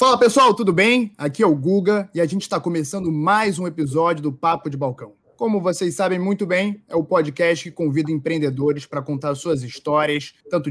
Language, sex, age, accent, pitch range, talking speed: Portuguese, male, 20-39, Brazilian, 145-185 Hz, 200 wpm